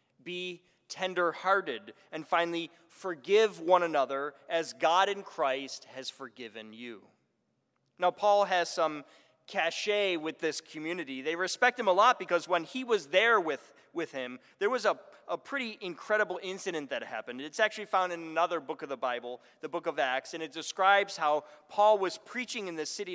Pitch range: 155-205 Hz